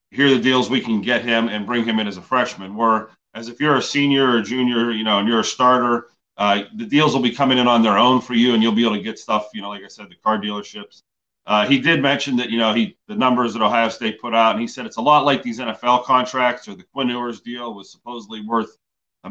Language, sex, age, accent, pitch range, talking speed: English, male, 40-59, American, 110-125 Hz, 275 wpm